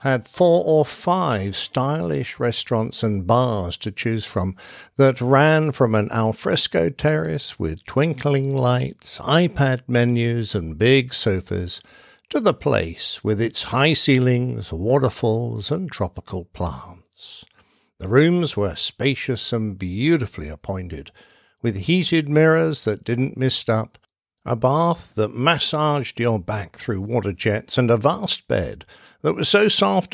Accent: British